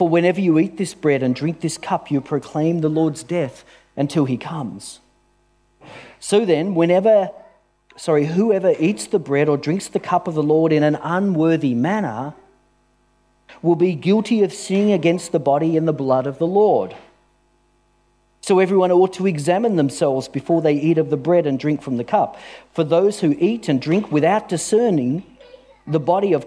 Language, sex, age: English, male, 40-59